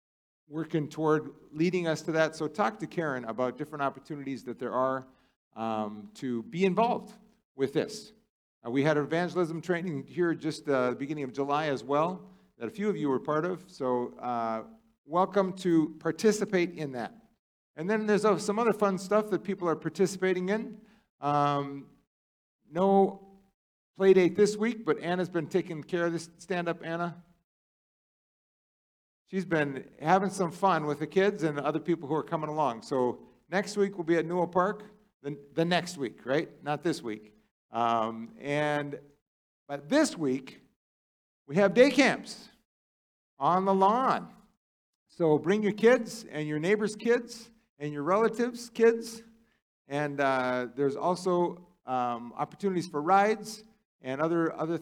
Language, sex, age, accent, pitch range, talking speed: English, male, 50-69, American, 140-195 Hz, 160 wpm